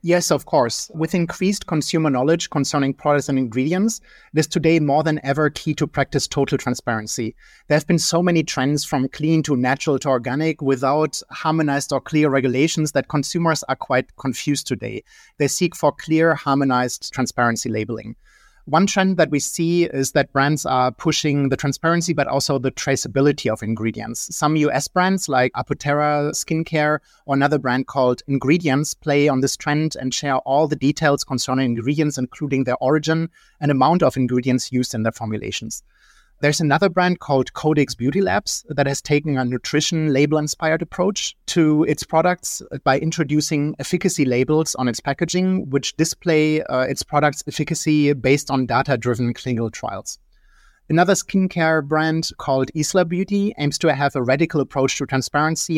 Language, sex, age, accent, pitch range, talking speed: English, male, 30-49, German, 135-160 Hz, 165 wpm